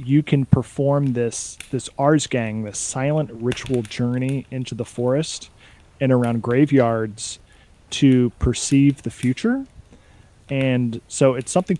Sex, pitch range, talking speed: male, 115-130 Hz, 125 wpm